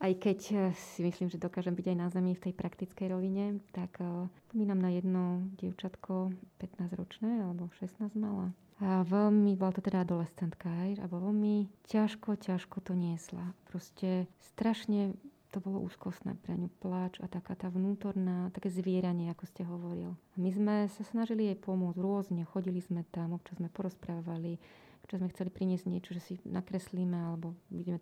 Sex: female